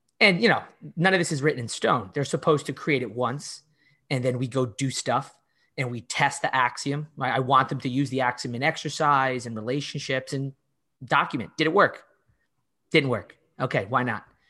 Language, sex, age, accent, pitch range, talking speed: English, male, 30-49, American, 125-150 Hz, 200 wpm